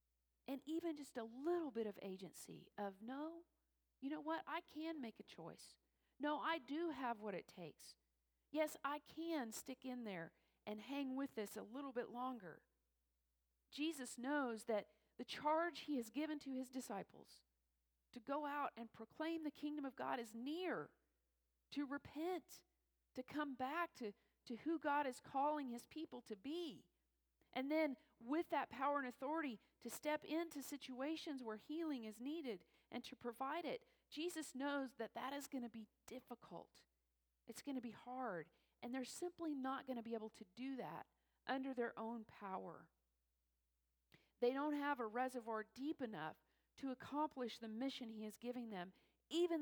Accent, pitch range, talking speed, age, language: American, 215-290 Hz, 170 wpm, 40-59, English